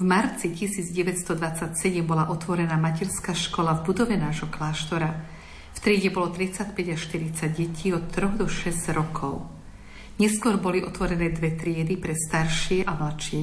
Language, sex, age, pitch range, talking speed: Slovak, female, 50-69, 160-185 Hz, 145 wpm